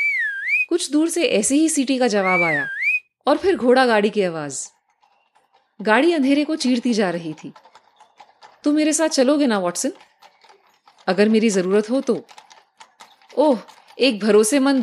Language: Hindi